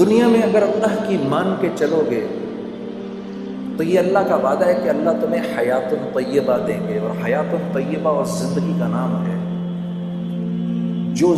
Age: 50-69